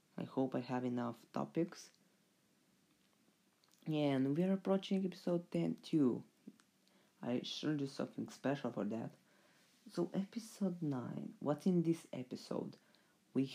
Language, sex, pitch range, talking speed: English, female, 130-180 Hz, 125 wpm